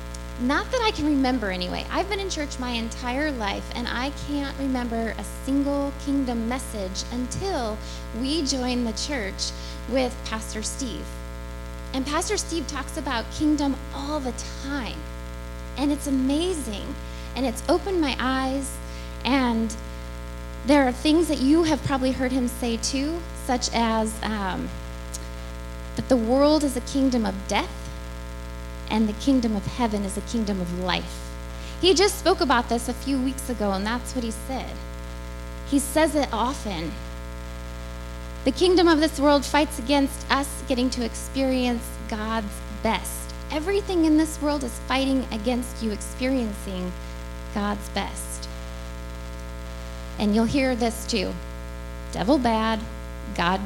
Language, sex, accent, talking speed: English, female, American, 145 wpm